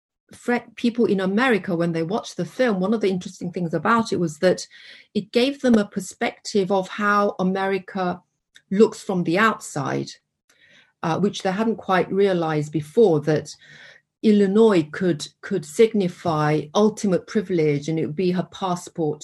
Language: English